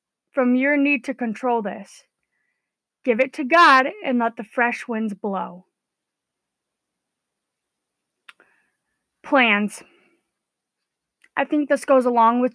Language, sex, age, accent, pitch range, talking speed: English, female, 20-39, American, 235-285 Hz, 110 wpm